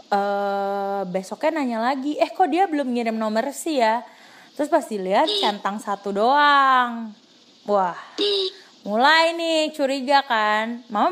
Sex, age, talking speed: female, 20-39, 130 wpm